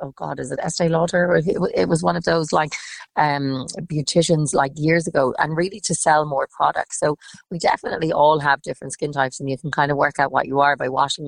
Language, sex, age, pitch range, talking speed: English, female, 40-59, 135-160 Hz, 230 wpm